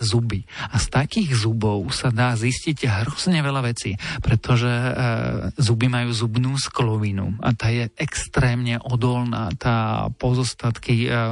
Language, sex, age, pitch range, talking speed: Slovak, male, 40-59, 115-130 Hz, 115 wpm